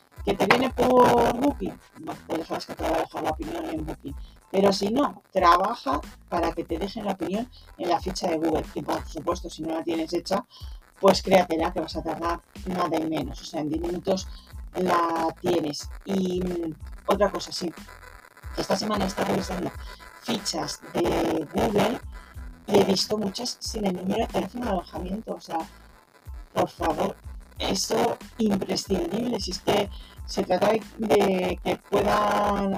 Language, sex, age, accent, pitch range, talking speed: Spanish, female, 40-59, Spanish, 170-205 Hz, 170 wpm